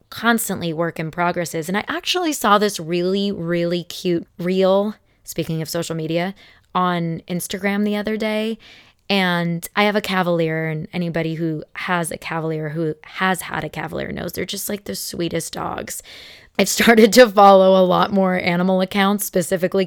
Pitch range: 170-205 Hz